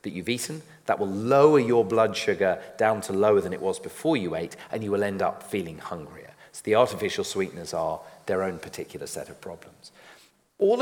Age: 40-59